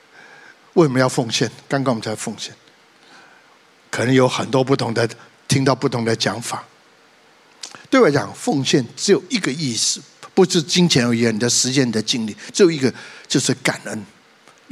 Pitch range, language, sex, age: 125-195 Hz, Chinese, male, 60-79